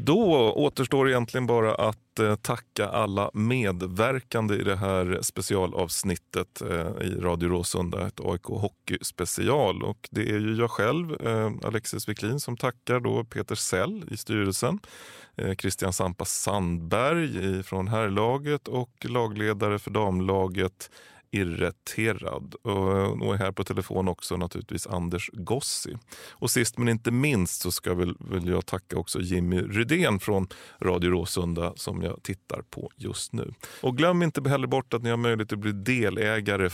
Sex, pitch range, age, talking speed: male, 95-115 Hz, 30-49, 145 wpm